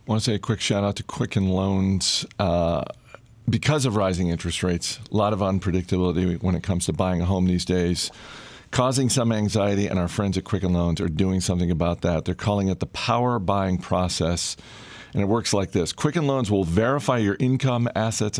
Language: English